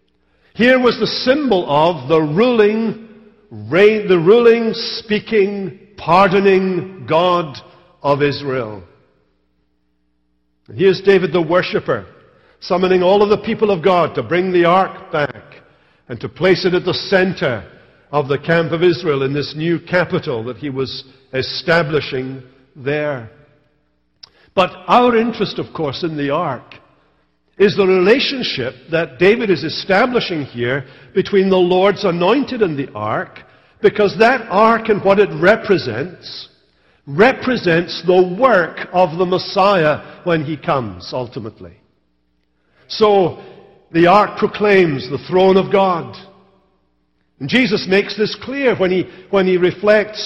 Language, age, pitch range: English, 60-79, 145-200 Hz